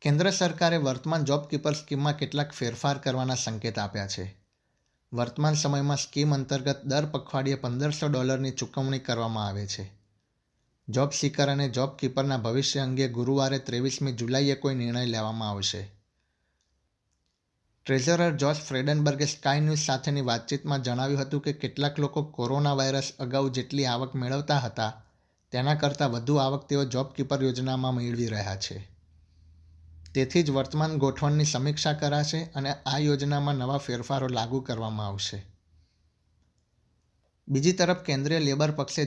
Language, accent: Gujarati, native